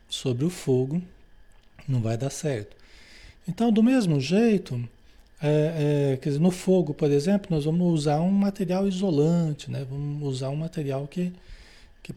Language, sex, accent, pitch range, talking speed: Portuguese, male, Brazilian, 140-190 Hz, 160 wpm